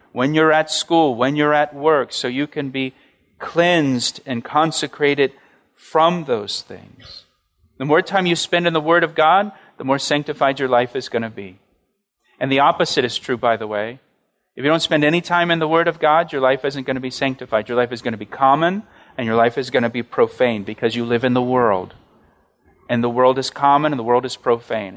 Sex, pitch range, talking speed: male, 130-170 Hz, 225 wpm